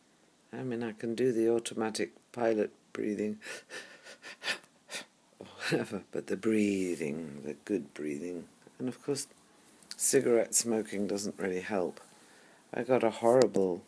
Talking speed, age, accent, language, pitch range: 125 wpm, 60-79, British, English, 95-115 Hz